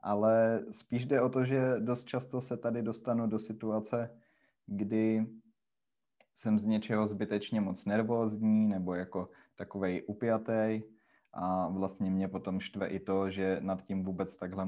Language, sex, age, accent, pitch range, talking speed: Czech, male, 20-39, native, 100-115 Hz, 145 wpm